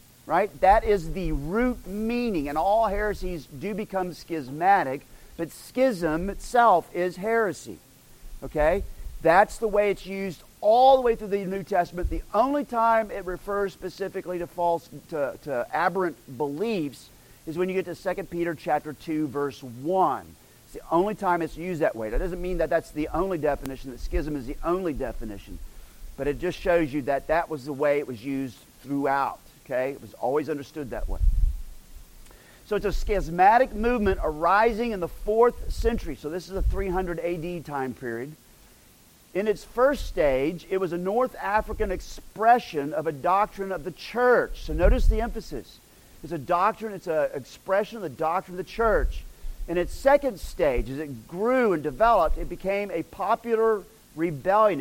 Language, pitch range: English, 155-210 Hz